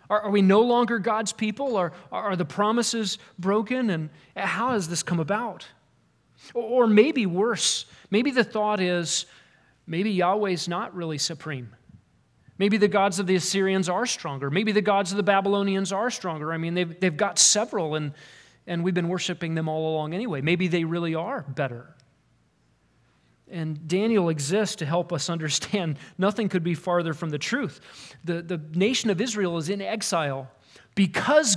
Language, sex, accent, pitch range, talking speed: English, male, American, 160-205 Hz, 170 wpm